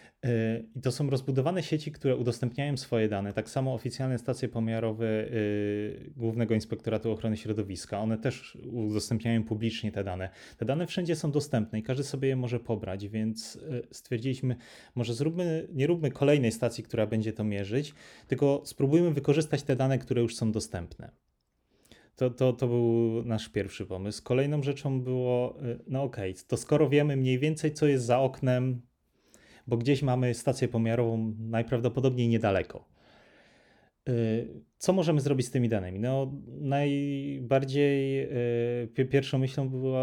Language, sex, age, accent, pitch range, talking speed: Polish, male, 30-49, native, 110-135 Hz, 140 wpm